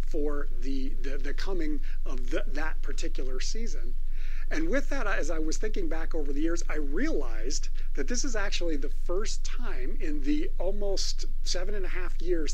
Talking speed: 175 wpm